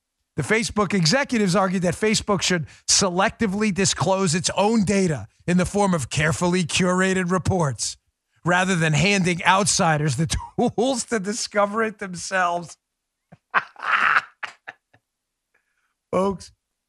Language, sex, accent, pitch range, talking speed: English, male, American, 155-205 Hz, 105 wpm